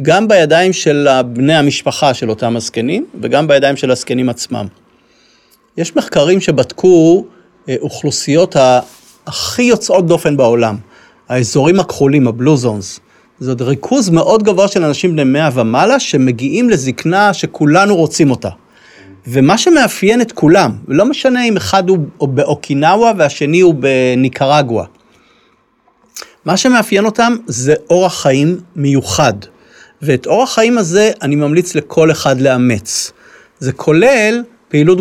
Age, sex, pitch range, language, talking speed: 40-59, male, 130-185 Hz, Hebrew, 120 wpm